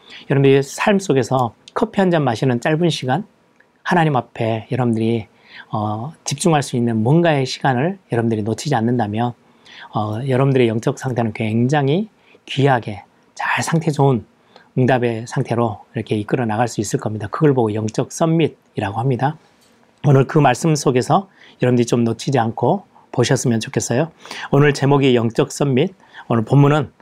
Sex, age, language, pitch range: male, 40-59, Korean, 115-150 Hz